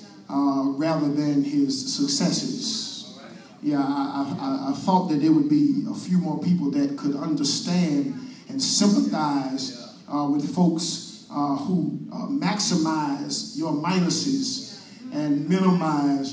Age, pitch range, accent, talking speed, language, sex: 40-59, 170-235 Hz, American, 125 wpm, English, male